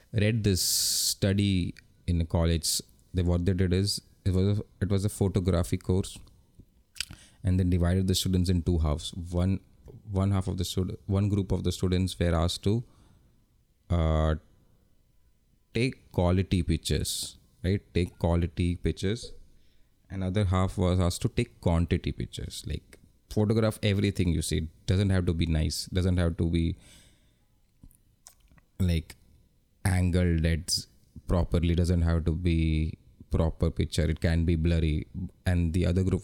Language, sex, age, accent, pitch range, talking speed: English, male, 30-49, Indian, 85-100 Hz, 150 wpm